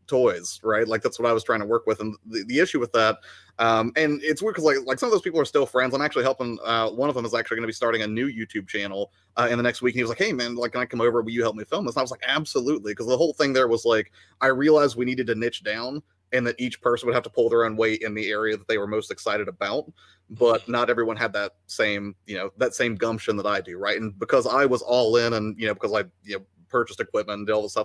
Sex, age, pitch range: male, 30-49, 110-135 Hz